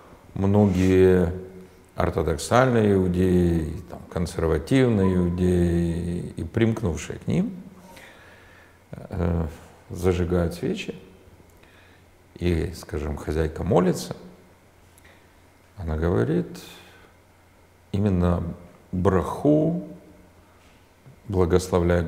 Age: 50-69